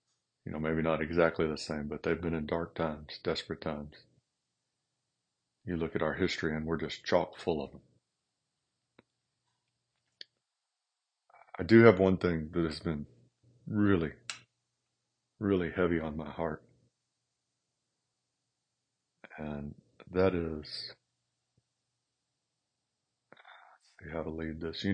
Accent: American